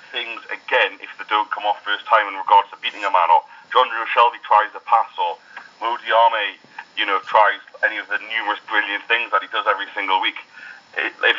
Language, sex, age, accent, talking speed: English, male, 40-59, British, 215 wpm